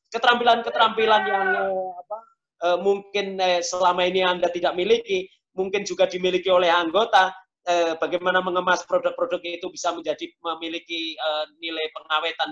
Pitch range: 165-200 Hz